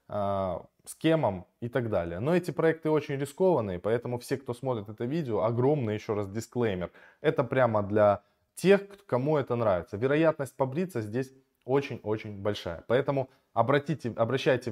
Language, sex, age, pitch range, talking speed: Russian, male, 20-39, 110-155 Hz, 145 wpm